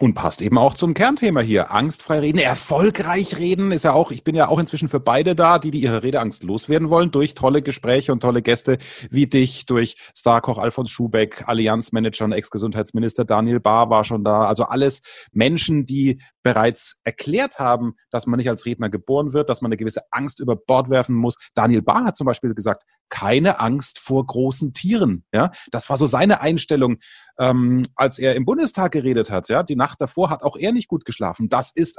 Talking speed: 200 wpm